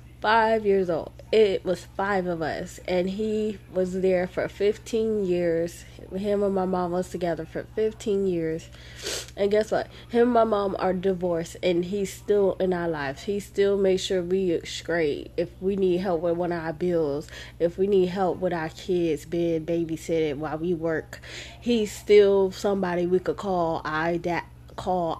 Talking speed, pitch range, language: 180 wpm, 145-200 Hz, English